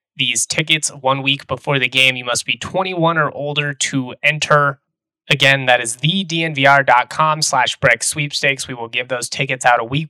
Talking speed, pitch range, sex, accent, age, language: 170 wpm, 125-145 Hz, male, American, 20-39, English